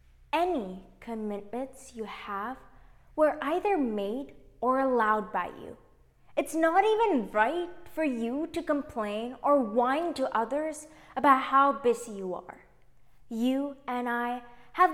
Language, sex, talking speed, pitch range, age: English, female, 130 wpm, 200-275 Hz, 20-39